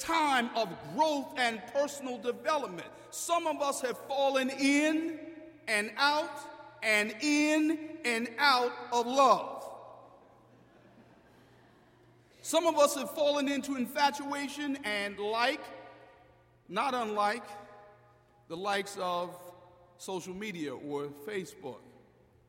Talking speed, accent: 100 wpm, American